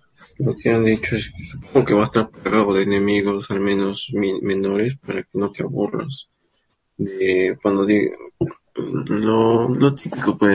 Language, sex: Spanish, male